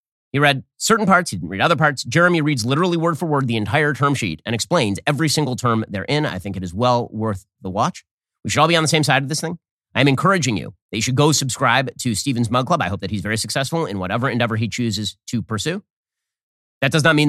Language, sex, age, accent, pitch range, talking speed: English, male, 30-49, American, 110-145 Hz, 255 wpm